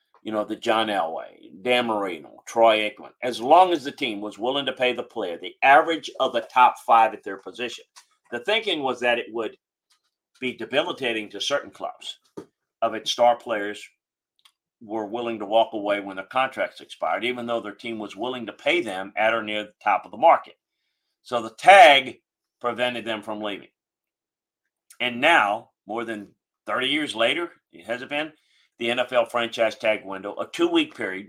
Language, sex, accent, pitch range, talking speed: English, male, American, 110-145 Hz, 185 wpm